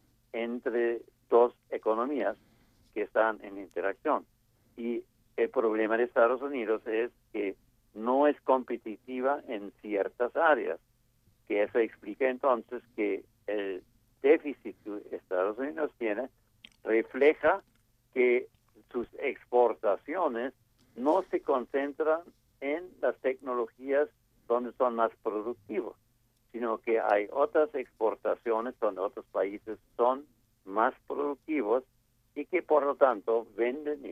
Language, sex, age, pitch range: Chinese, male, 60-79, 110-140 Hz